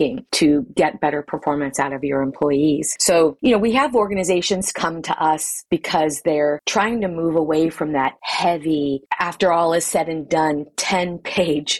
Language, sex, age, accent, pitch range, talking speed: English, female, 30-49, American, 150-185 Hz, 170 wpm